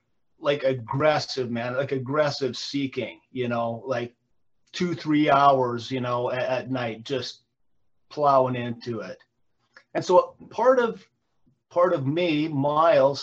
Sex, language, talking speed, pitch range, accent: male, English, 130 wpm, 125-160 Hz, American